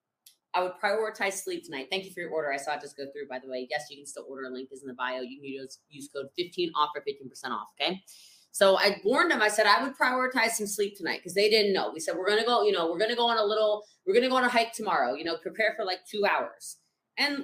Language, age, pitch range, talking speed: English, 20-39, 155-220 Hz, 300 wpm